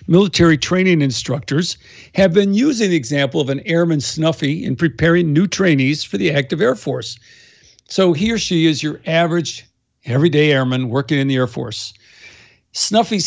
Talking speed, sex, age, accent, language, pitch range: 165 wpm, male, 50-69, American, English, 135-175 Hz